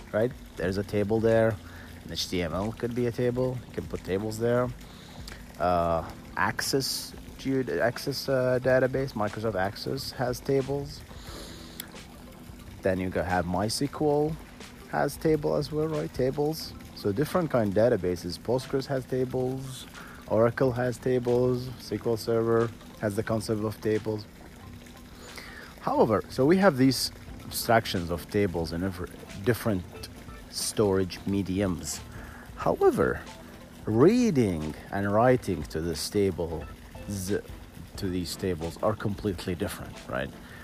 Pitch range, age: 85-125 Hz, 40-59